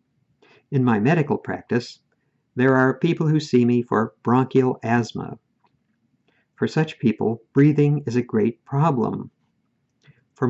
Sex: male